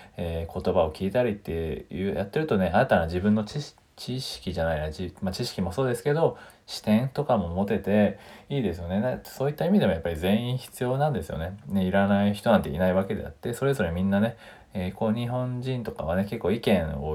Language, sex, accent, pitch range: Japanese, male, native, 90-130 Hz